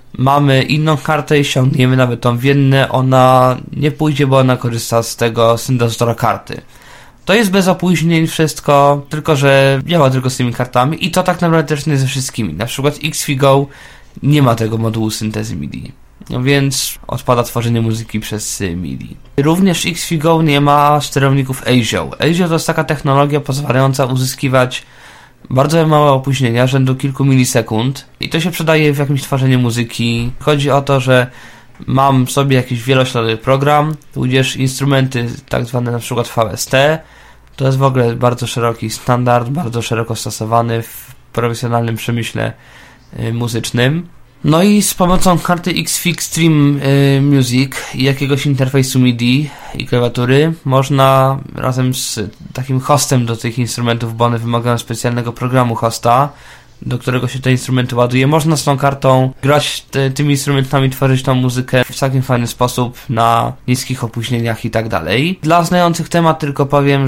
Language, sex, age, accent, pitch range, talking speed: Polish, male, 20-39, native, 120-145 Hz, 155 wpm